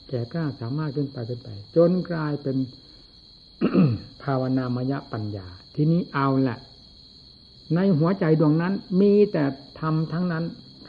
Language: Thai